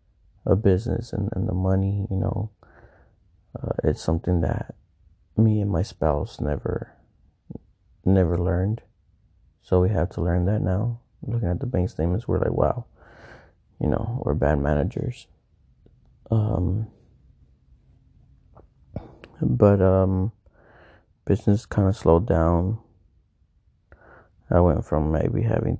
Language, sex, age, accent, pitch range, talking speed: English, male, 30-49, American, 85-110 Hz, 120 wpm